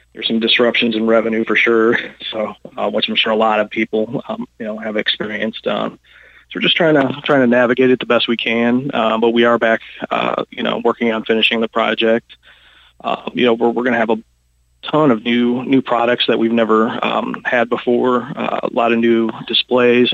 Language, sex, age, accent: English, male, 30-49, American